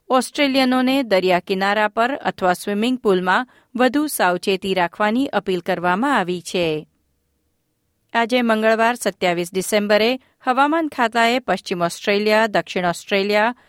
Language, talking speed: Gujarati, 105 wpm